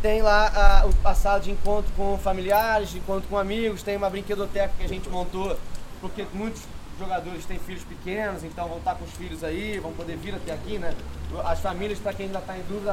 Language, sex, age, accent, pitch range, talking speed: Portuguese, male, 20-39, Brazilian, 185-215 Hz, 215 wpm